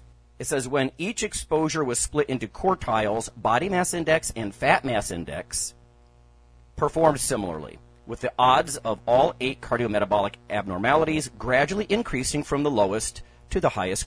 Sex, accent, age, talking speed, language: male, American, 40-59, 145 wpm, English